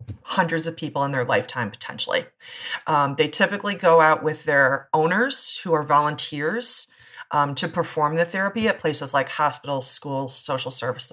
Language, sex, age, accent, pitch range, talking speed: English, female, 30-49, American, 140-180 Hz, 160 wpm